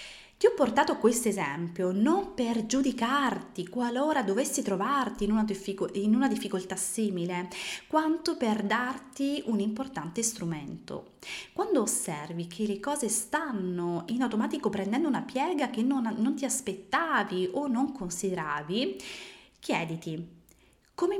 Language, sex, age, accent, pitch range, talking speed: Italian, female, 20-39, native, 185-265 Hz, 120 wpm